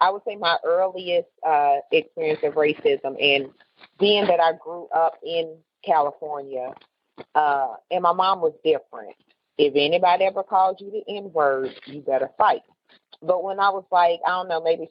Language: English